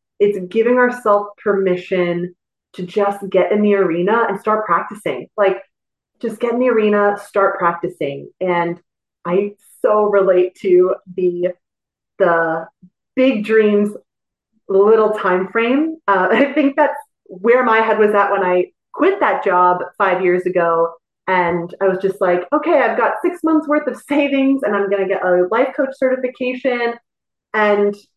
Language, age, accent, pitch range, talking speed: English, 30-49, American, 180-235 Hz, 155 wpm